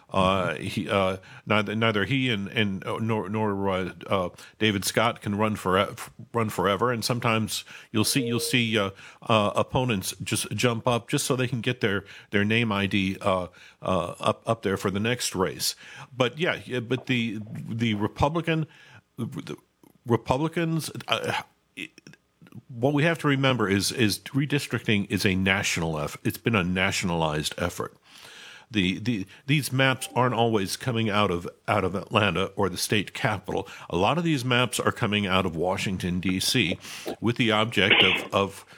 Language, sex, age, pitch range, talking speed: English, male, 50-69, 100-125 Hz, 165 wpm